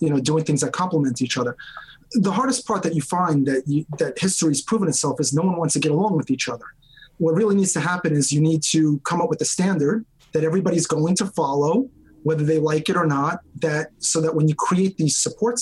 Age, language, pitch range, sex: 30-49, English, 150-185 Hz, male